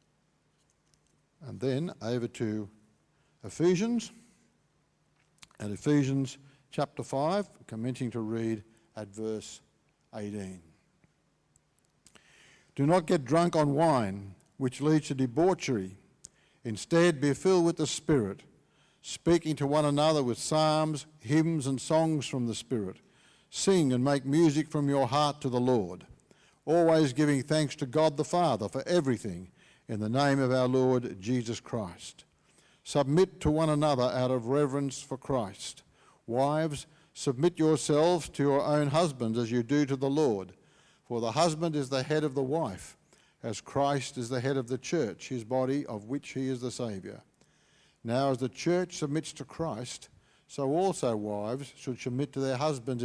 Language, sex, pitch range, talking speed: English, male, 125-155 Hz, 150 wpm